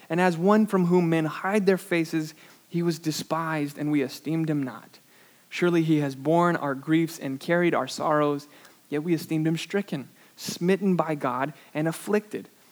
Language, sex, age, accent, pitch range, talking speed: English, male, 20-39, American, 140-170 Hz, 175 wpm